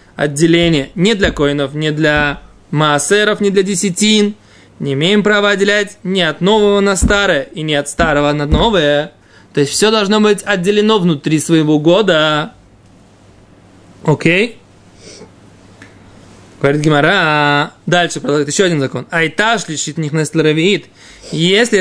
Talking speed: 130 wpm